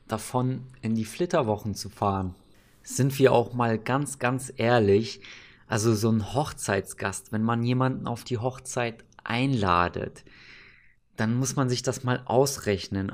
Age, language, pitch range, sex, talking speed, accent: 20-39, German, 105-130 Hz, male, 140 wpm, German